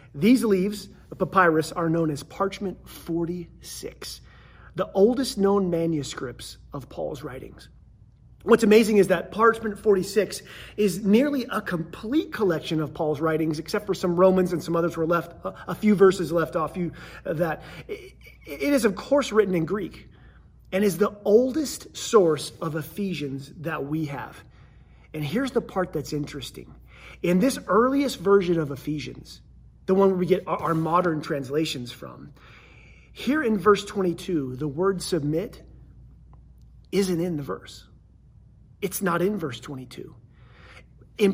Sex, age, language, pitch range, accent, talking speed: male, 30-49, English, 160-215 Hz, American, 150 wpm